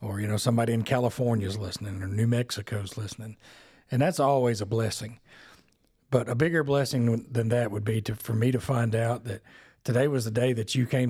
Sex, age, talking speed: male, 40-59, 215 wpm